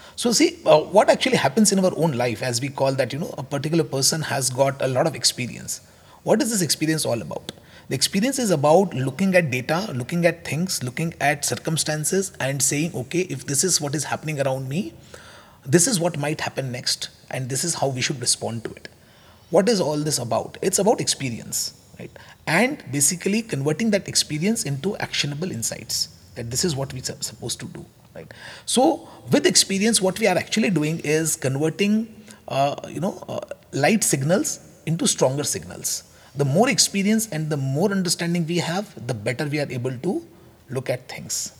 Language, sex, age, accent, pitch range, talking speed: English, male, 30-49, Indian, 130-180 Hz, 190 wpm